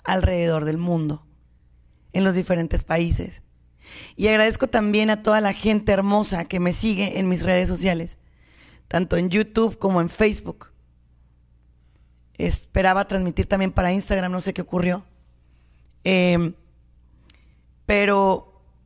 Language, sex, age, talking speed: Spanish, female, 30-49, 125 wpm